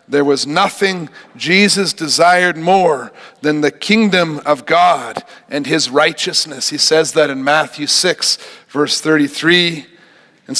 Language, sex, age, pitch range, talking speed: English, male, 50-69, 170-225 Hz, 130 wpm